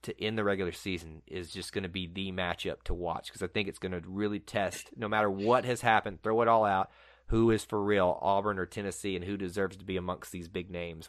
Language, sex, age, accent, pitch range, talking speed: English, male, 30-49, American, 95-130 Hz, 255 wpm